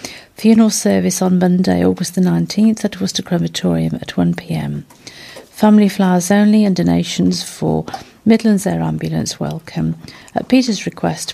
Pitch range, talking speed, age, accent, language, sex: 160-200 Hz, 140 wpm, 50-69, British, English, female